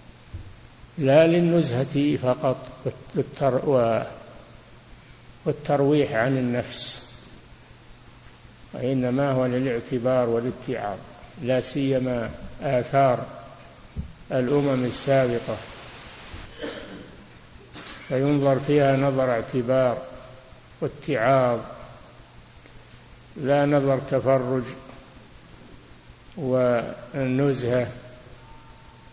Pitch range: 125-145 Hz